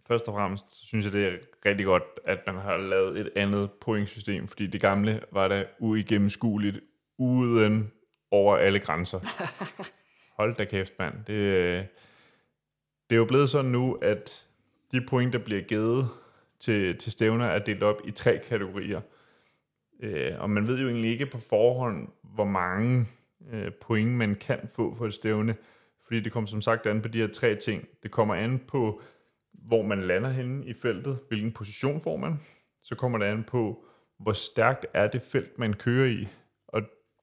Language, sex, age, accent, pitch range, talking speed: Danish, male, 30-49, native, 105-120 Hz, 170 wpm